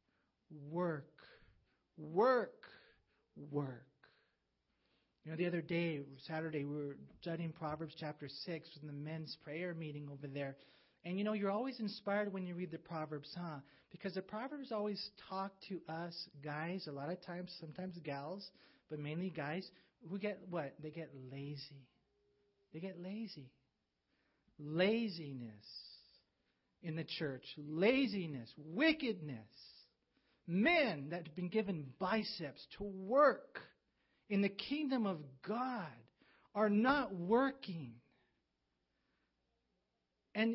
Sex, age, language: male, 40-59, English